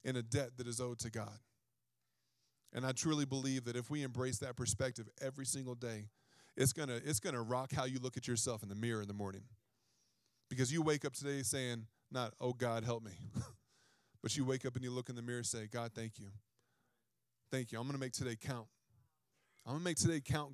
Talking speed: 230 wpm